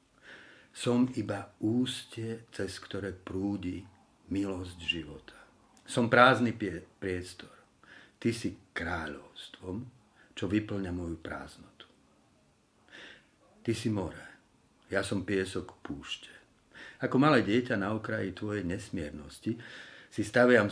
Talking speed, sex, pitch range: 100 wpm, male, 95-115 Hz